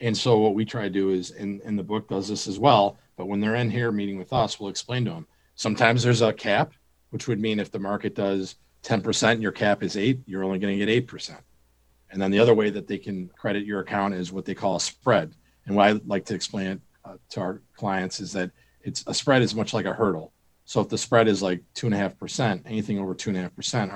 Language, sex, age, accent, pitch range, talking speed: English, male, 40-59, American, 95-120 Hz, 245 wpm